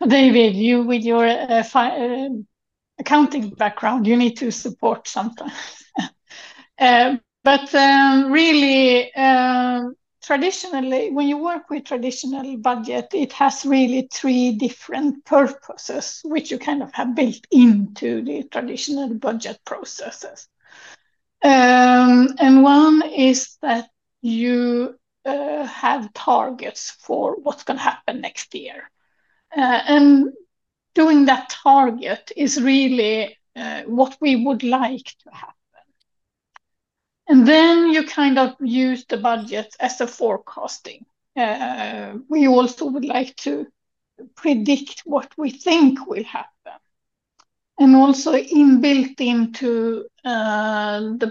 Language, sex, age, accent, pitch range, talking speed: English, female, 60-79, Swedish, 240-285 Hz, 115 wpm